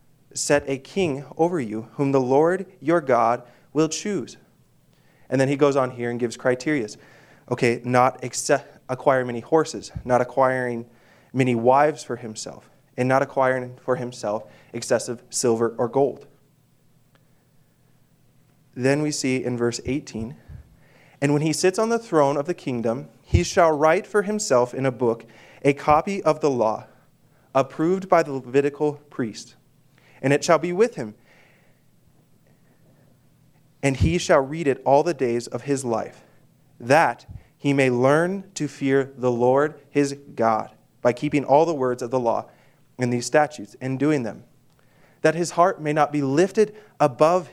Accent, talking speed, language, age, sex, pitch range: American, 160 wpm, English, 20-39, male, 125-150 Hz